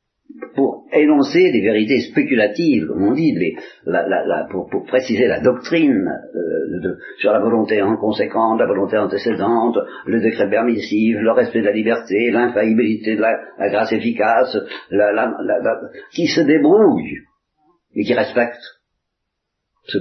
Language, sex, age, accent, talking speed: Italian, male, 50-69, French, 155 wpm